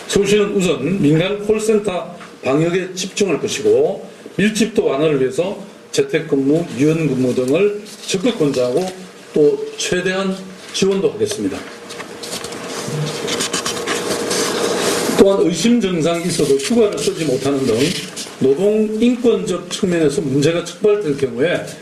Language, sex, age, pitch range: Korean, male, 40-59, 160-225 Hz